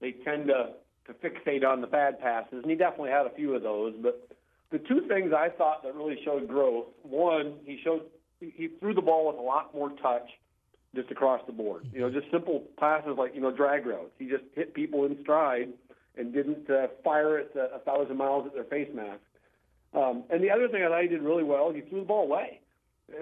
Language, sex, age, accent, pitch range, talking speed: English, male, 50-69, American, 130-160 Hz, 225 wpm